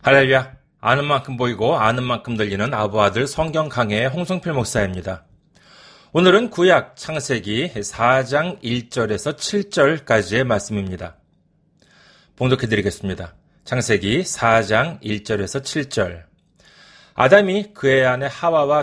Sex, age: male, 30-49